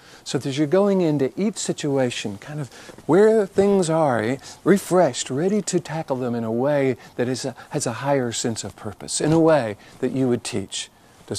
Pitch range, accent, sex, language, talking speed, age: 115-180 Hz, American, male, English, 185 wpm, 50-69